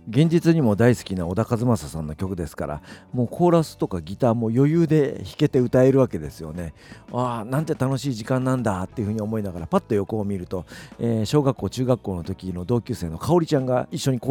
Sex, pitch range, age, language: male, 85-130 Hz, 50-69, Japanese